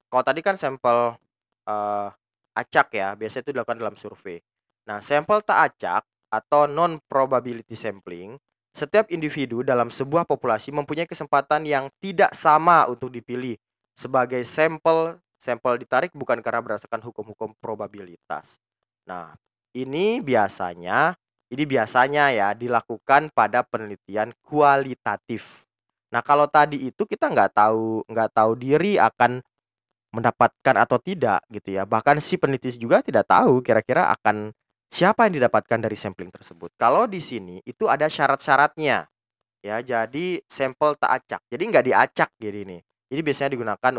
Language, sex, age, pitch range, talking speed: Indonesian, male, 20-39, 110-145 Hz, 135 wpm